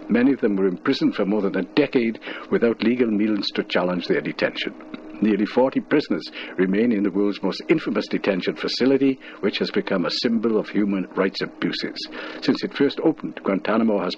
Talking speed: 180 wpm